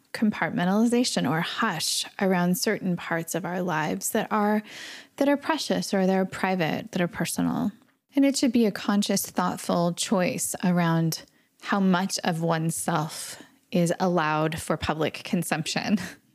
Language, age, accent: English, 10-29, American